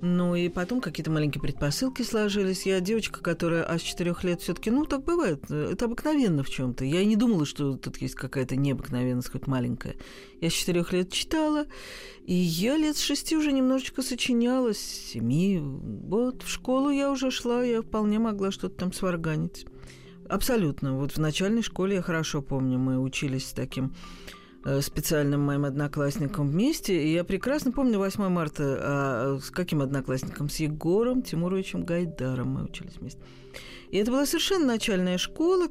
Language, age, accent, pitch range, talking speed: Russian, 40-59, native, 145-235 Hz, 165 wpm